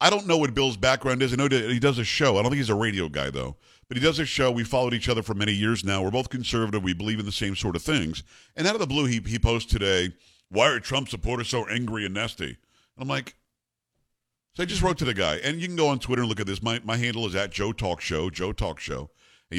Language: English